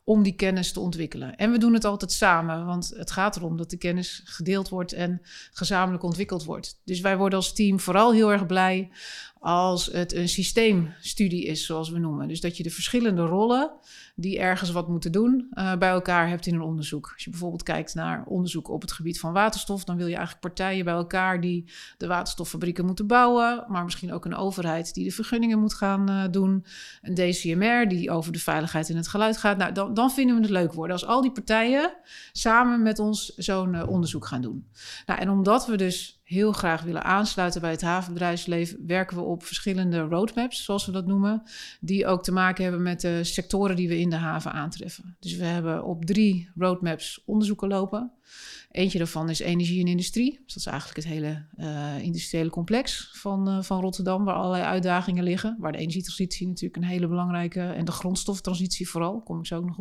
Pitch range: 175-200 Hz